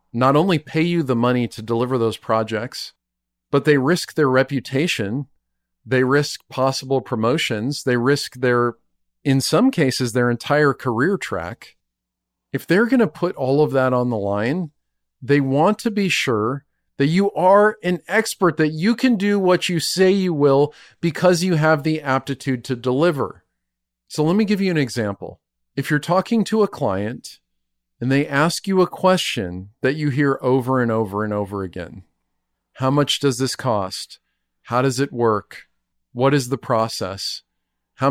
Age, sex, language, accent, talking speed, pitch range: 40-59, male, English, American, 170 wpm, 110-160 Hz